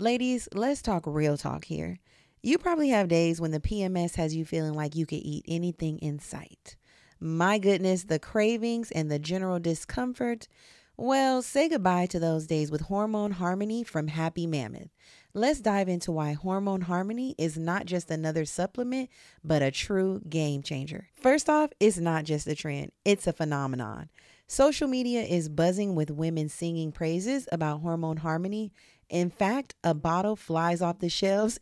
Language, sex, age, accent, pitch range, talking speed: English, female, 30-49, American, 160-210 Hz, 165 wpm